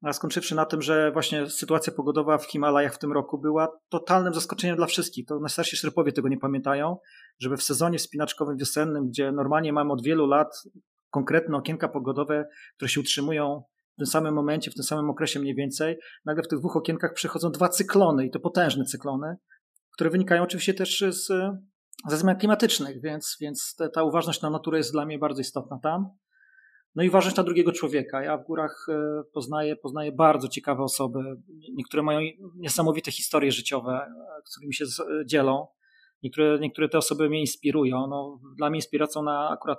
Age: 40-59